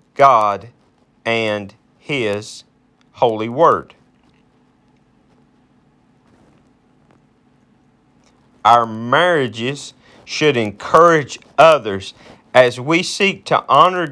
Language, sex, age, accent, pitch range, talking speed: English, male, 50-69, American, 125-175 Hz, 65 wpm